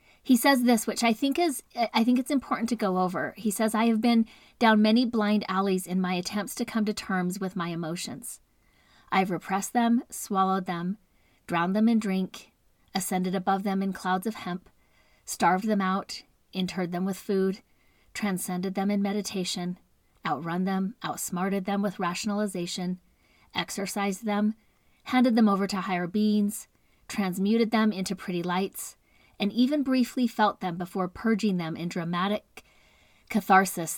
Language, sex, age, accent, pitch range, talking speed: English, female, 40-59, American, 180-220 Hz, 160 wpm